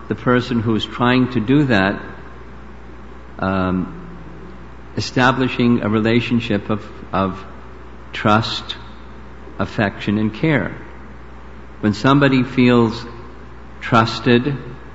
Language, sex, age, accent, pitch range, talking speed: English, male, 50-69, American, 90-115 Hz, 90 wpm